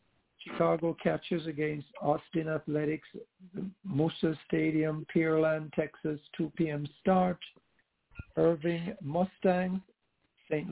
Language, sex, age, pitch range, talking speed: English, male, 60-79, 145-175 Hz, 85 wpm